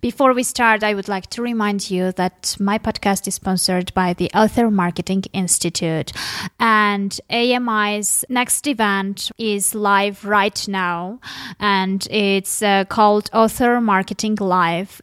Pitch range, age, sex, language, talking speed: 190-230 Hz, 20-39, female, English, 135 wpm